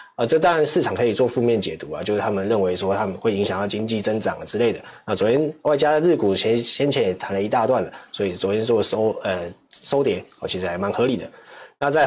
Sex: male